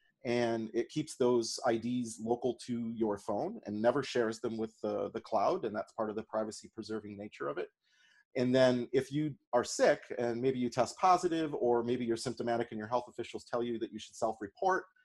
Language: English